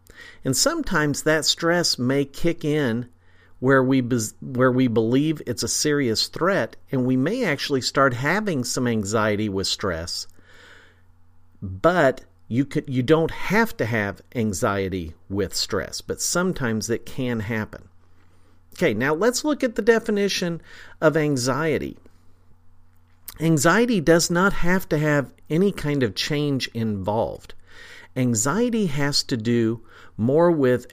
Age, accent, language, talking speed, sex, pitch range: 50-69, American, English, 130 wpm, male, 100-150 Hz